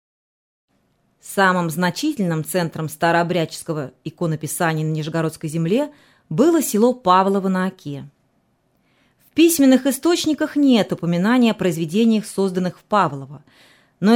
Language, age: Russian, 30-49